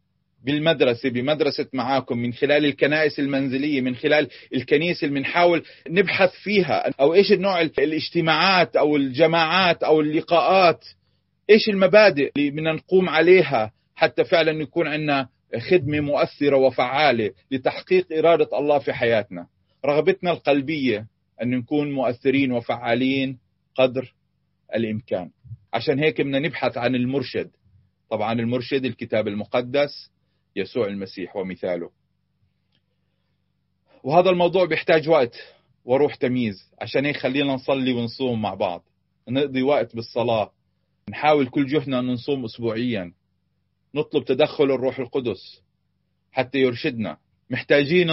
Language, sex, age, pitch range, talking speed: Arabic, male, 40-59, 120-160 Hz, 110 wpm